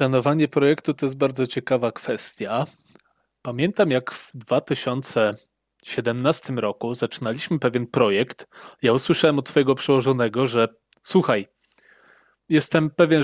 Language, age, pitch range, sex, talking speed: Polish, 20-39, 125-150 Hz, male, 110 wpm